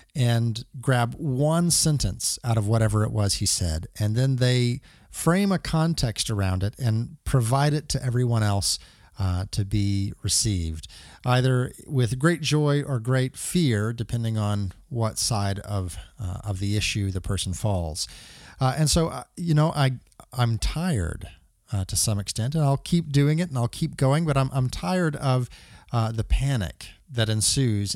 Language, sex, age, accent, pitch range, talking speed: English, male, 40-59, American, 105-140 Hz, 170 wpm